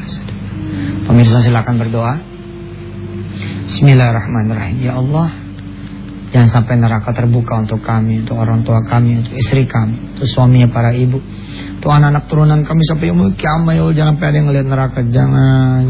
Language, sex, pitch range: English, male, 110-150 Hz